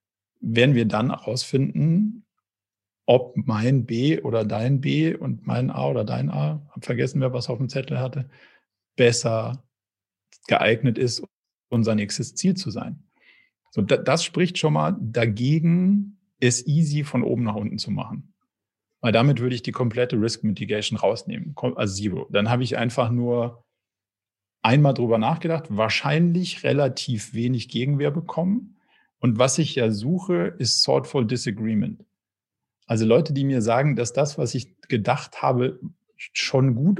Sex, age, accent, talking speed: male, 40-59, German, 150 wpm